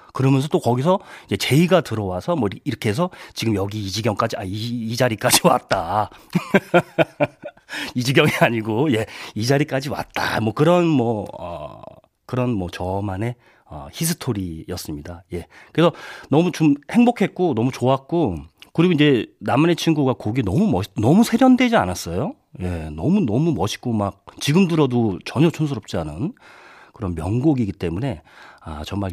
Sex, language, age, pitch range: male, Korean, 40-59, 100-155 Hz